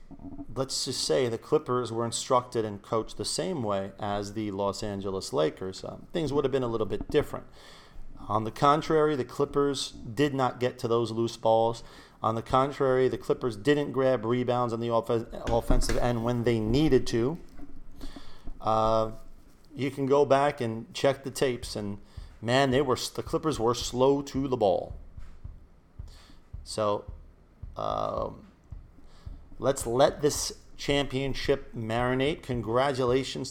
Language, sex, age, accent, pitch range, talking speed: English, male, 40-59, American, 105-130 Hz, 150 wpm